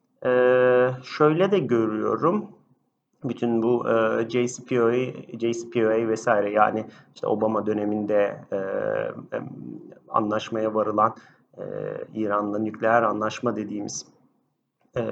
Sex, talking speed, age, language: male, 90 wpm, 40-59, Turkish